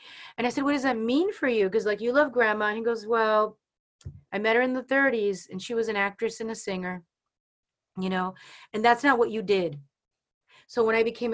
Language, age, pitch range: English, 30-49, 190-235 Hz